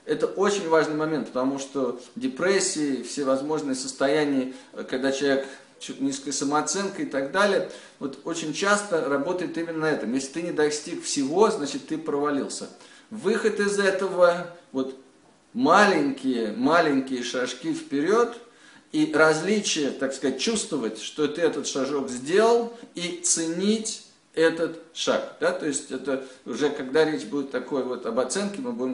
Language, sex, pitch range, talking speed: Russian, male, 140-215 Hz, 140 wpm